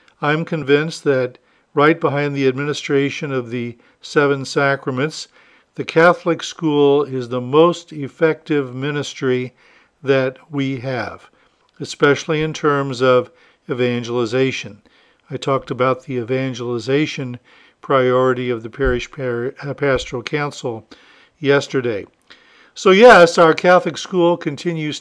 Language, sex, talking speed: English, male, 110 wpm